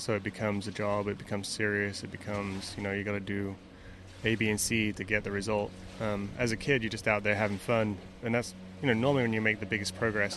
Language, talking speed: English, 260 wpm